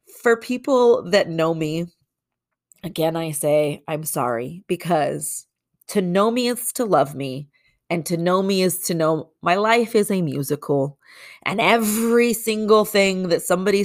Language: English